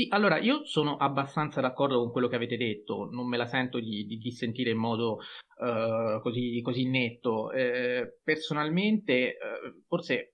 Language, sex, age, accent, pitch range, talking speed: Italian, male, 30-49, native, 115-145 Hz, 165 wpm